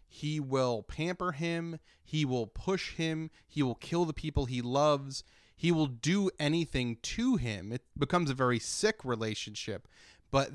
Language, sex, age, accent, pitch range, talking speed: English, male, 30-49, American, 115-150 Hz, 160 wpm